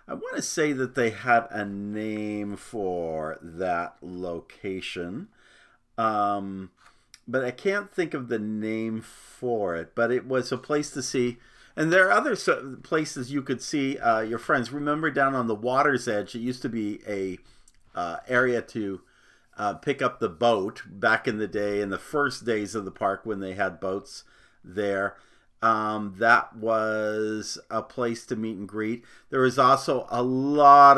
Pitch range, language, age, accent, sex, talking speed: 105-135 Hz, English, 50-69, American, male, 170 wpm